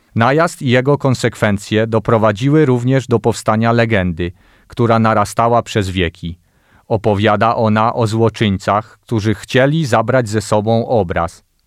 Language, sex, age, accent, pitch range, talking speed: Polish, male, 40-59, native, 105-125 Hz, 120 wpm